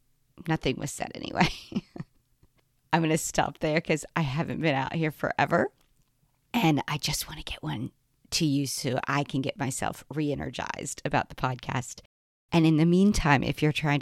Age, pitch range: 40-59, 135-160 Hz